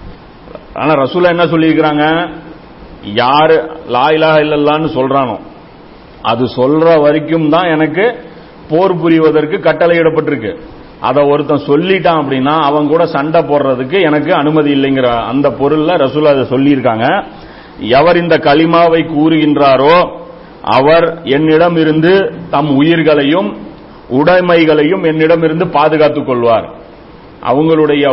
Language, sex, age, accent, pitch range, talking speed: Tamil, male, 50-69, native, 140-165 Hz, 95 wpm